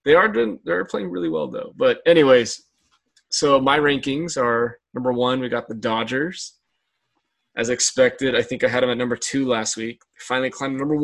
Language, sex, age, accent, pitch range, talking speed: English, male, 20-39, American, 125-145 Hz, 200 wpm